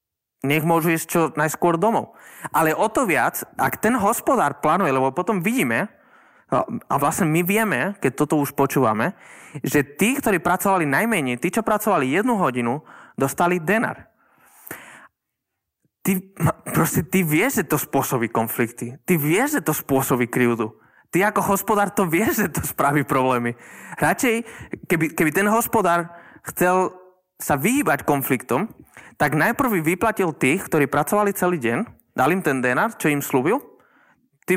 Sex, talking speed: male, 150 wpm